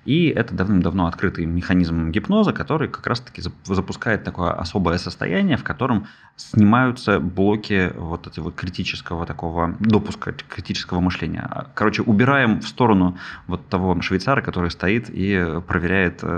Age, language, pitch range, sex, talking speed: 20-39, Russian, 85-100 Hz, male, 130 wpm